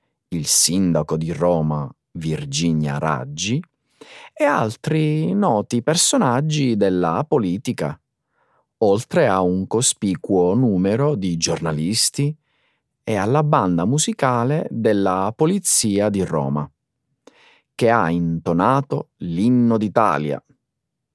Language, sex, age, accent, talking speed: Italian, male, 40-59, native, 90 wpm